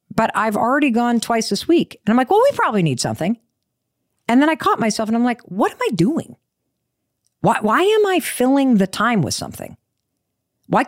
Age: 50-69